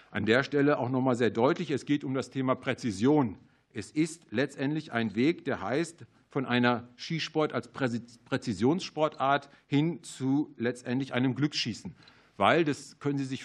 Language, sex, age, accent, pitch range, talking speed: German, male, 50-69, German, 115-140 Hz, 155 wpm